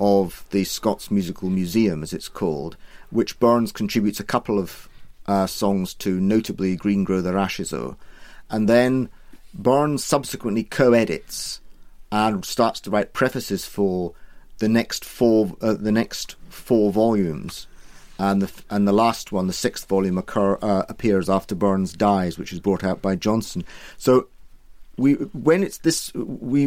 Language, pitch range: English, 100-120 Hz